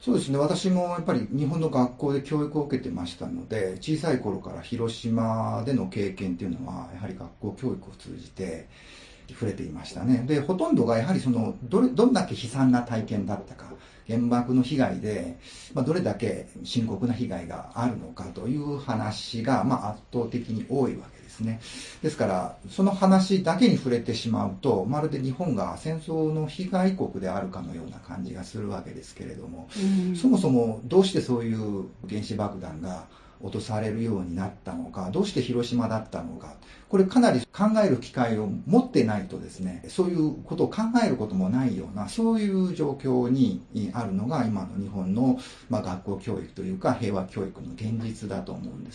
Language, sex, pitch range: Japanese, male, 105-160 Hz